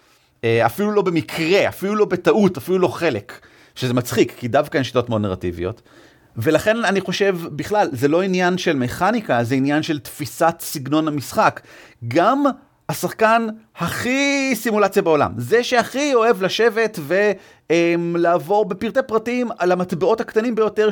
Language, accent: Hebrew, native